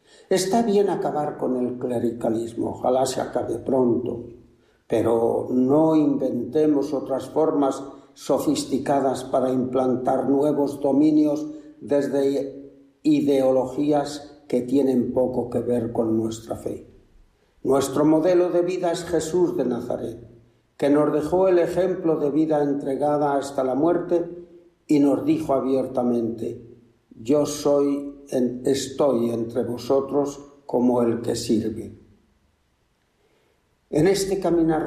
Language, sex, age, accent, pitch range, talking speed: Spanish, male, 60-79, Spanish, 125-155 Hz, 115 wpm